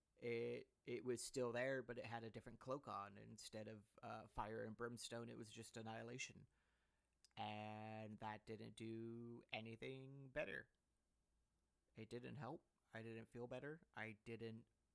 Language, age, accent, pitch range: English, 30-49, American, 110-125 Hz